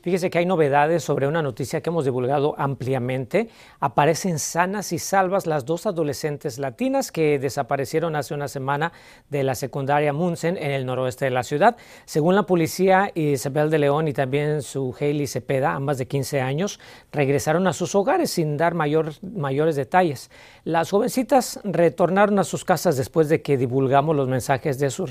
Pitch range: 140-185 Hz